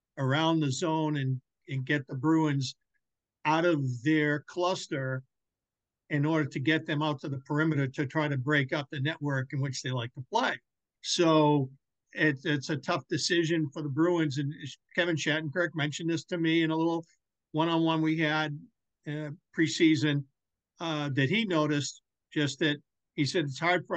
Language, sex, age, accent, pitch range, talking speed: English, male, 50-69, American, 140-170 Hz, 170 wpm